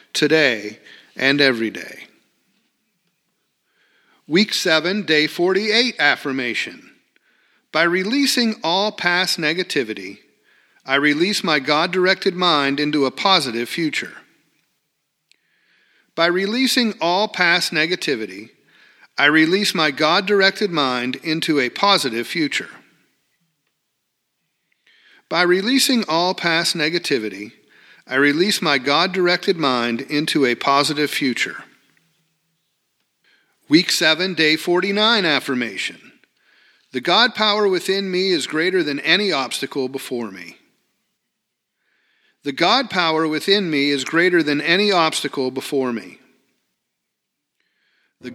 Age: 50-69